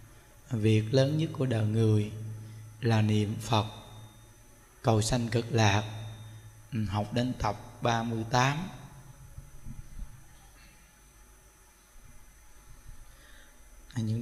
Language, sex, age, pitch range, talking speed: Vietnamese, male, 20-39, 110-140 Hz, 75 wpm